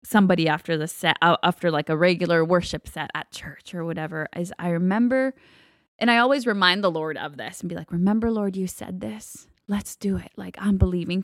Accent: American